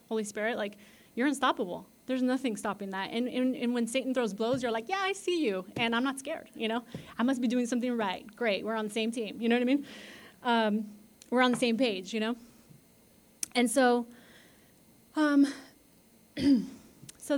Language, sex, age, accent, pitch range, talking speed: English, female, 30-49, American, 210-255 Hz, 195 wpm